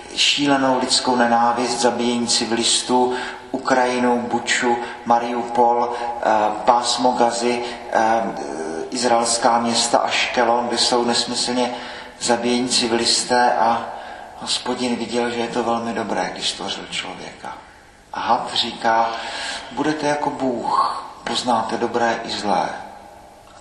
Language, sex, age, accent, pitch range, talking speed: Czech, male, 40-59, native, 120-130 Hz, 110 wpm